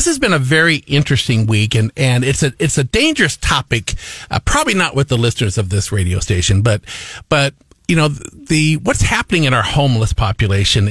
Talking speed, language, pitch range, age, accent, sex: 205 wpm, English, 110-135 Hz, 50-69, American, male